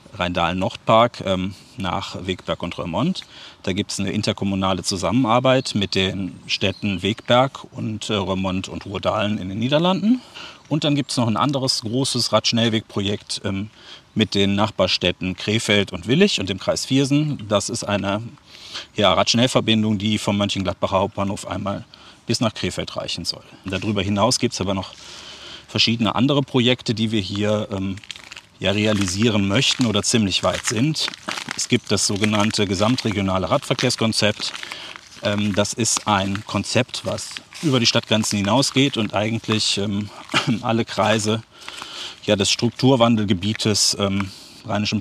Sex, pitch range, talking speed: male, 100-120 Hz, 145 wpm